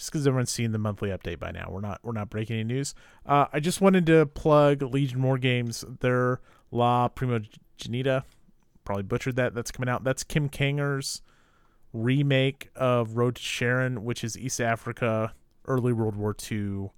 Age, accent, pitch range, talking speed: 30-49, American, 100-130 Hz, 180 wpm